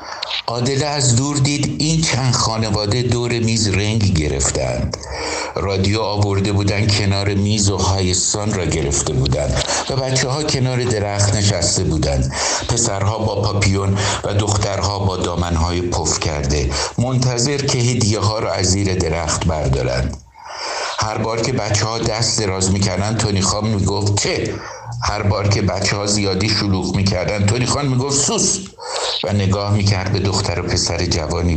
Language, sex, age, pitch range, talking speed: Persian, male, 60-79, 90-110 Hz, 150 wpm